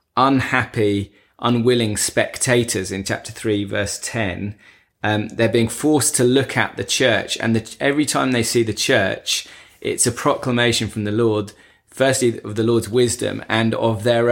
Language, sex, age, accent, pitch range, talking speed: English, male, 20-39, British, 105-120 Hz, 160 wpm